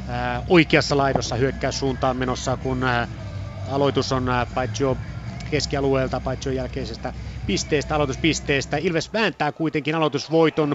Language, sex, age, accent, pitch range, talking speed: Finnish, male, 30-49, native, 135-160 Hz, 105 wpm